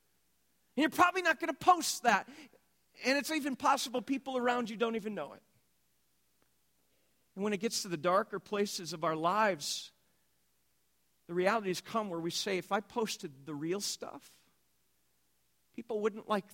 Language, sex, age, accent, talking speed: English, male, 50-69, American, 165 wpm